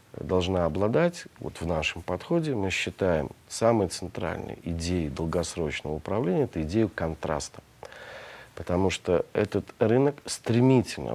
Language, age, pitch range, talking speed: Russian, 40-59, 85-115 Hz, 115 wpm